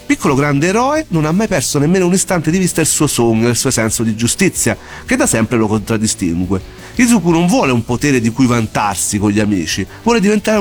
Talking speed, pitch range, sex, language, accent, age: 225 wpm, 110-180 Hz, male, Italian, native, 40-59